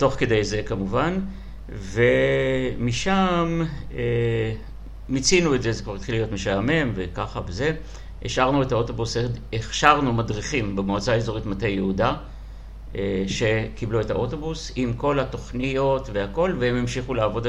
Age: 60-79